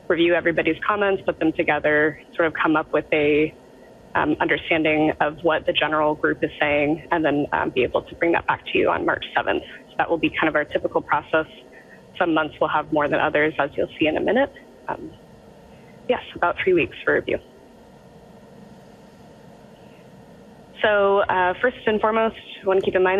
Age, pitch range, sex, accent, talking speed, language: 20-39, 155-195 Hz, female, American, 190 wpm, English